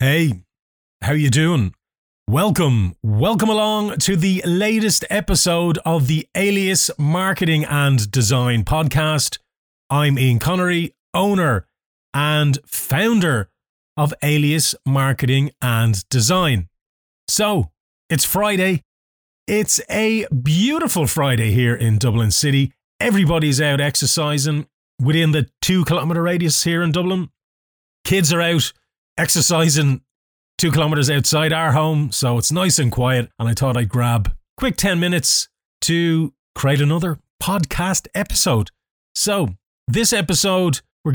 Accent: Irish